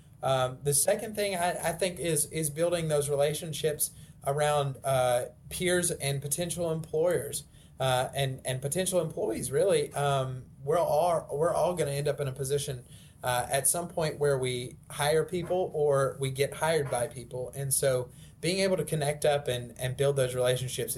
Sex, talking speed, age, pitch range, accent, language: male, 175 wpm, 30-49, 130-150 Hz, American, English